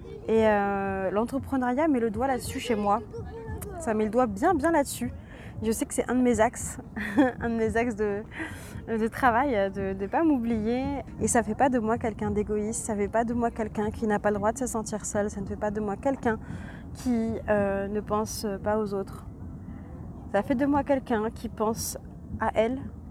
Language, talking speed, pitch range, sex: French, 215 wpm, 200-245 Hz, female